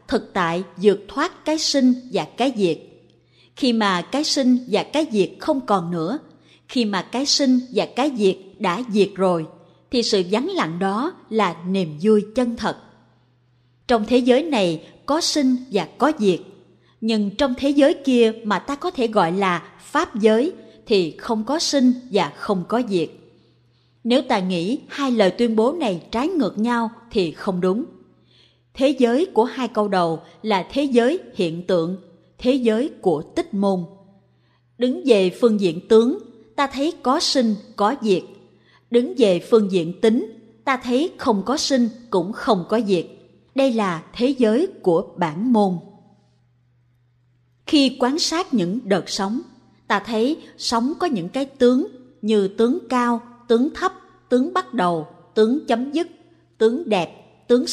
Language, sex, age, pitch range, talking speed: Vietnamese, female, 20-39, 190-260 Hz, 165 wpm